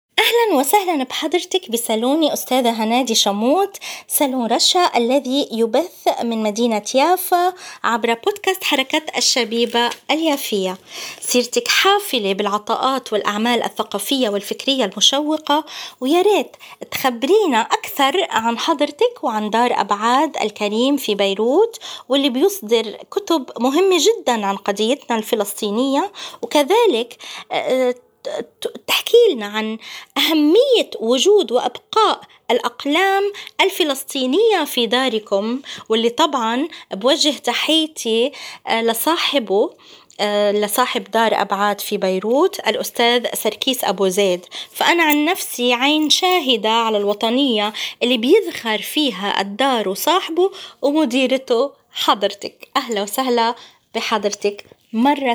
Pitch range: 225-315 Hz